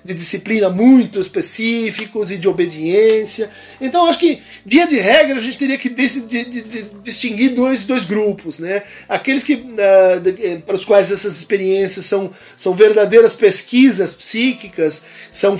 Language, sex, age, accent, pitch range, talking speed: Portuguese, male, 50-69, Brazilian, 195-245 Hz, 160 wpm